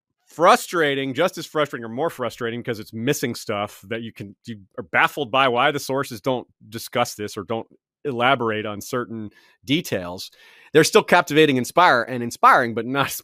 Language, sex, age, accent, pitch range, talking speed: English, male, 30-49, American, 115-180 Hz, 175 wpm